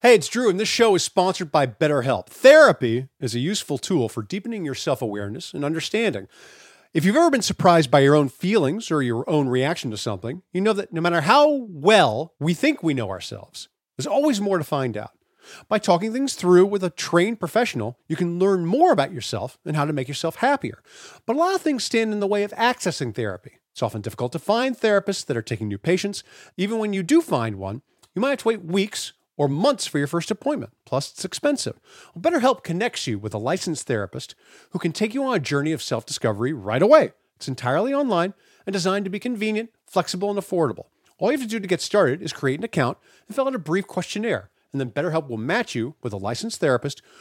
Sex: male